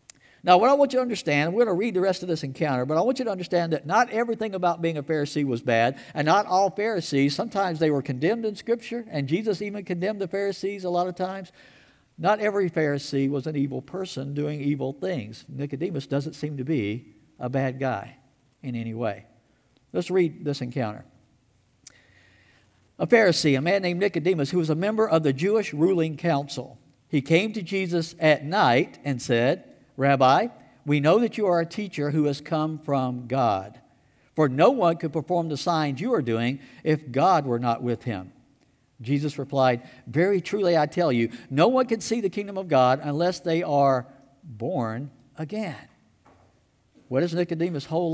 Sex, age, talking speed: male, 60-79, 190 wpm